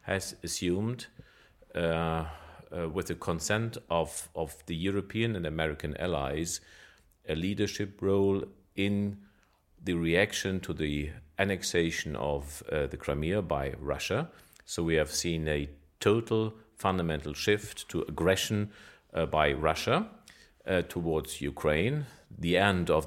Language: English